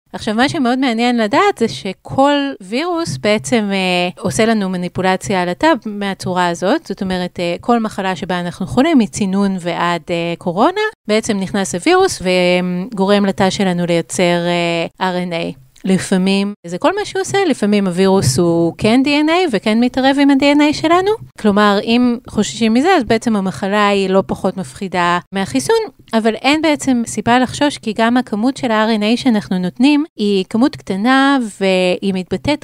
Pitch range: 185-255 Hz